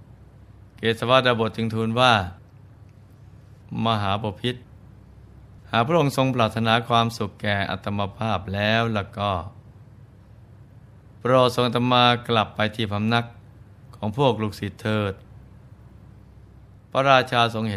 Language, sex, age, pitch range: Thai, male, 20-39, 105-120 Hz